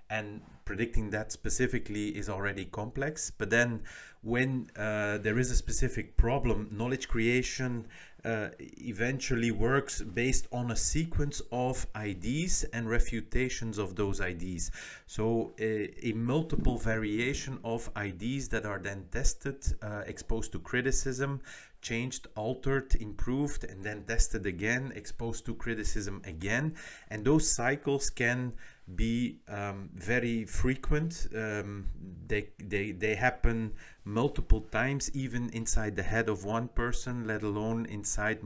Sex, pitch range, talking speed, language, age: male, 105-125 Hz, 130 wpm, English, 30-49